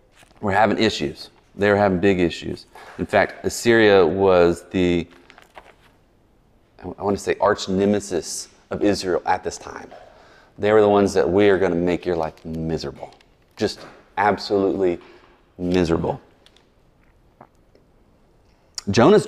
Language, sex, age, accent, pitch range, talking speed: English, male, 30-49, American, 95-120 Hz, 125 wpm